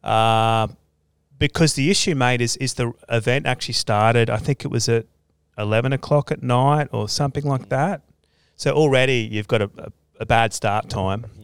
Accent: Australian